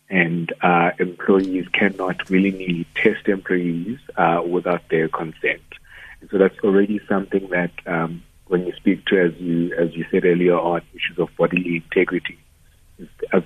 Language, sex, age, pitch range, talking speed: English, male, 50-69, 85-100 Hz, 155 wpm